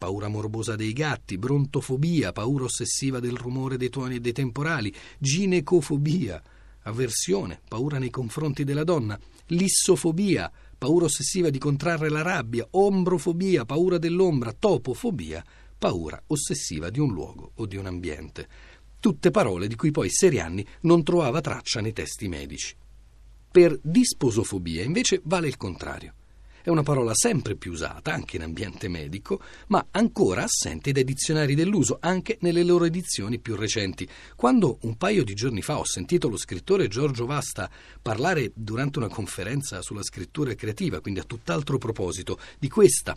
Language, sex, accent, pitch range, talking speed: Italian, male, native, 105-165 Hz, 145 wpm